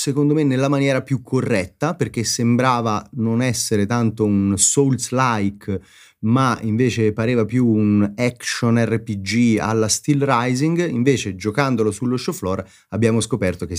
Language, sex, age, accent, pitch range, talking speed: Italian, male, 30-49, native, 95-125 Hz, 135 wpm